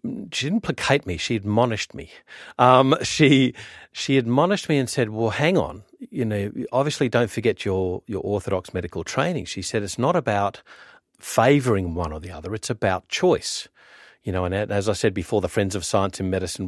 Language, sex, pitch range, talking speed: English, male, 95-125 Hz, 190 wpm